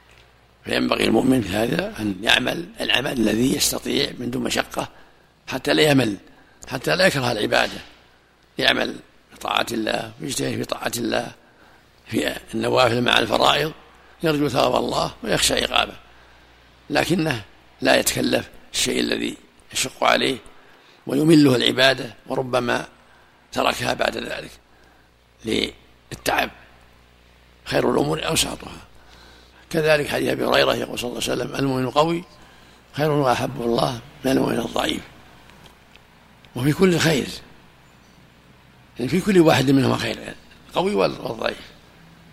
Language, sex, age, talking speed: Arabic, male, 60-79, 115 wpm